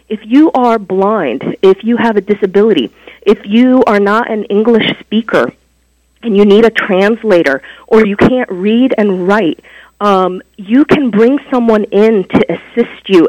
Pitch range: 180-235 Hz